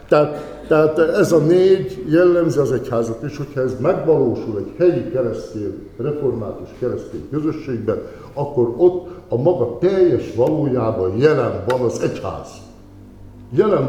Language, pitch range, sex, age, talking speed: Hungarian, 125-165 Hz, male, 60-79, 120 wpm